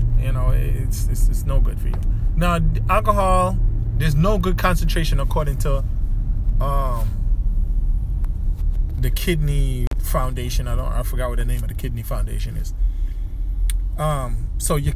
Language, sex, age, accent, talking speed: English, male, 20-39, American, 150 wpm